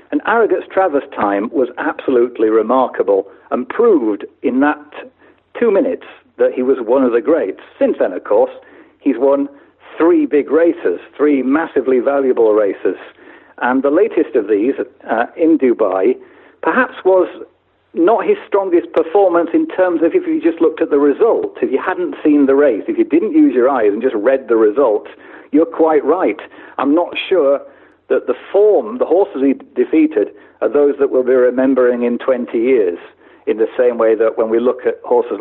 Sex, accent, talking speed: male, British, 180 wpm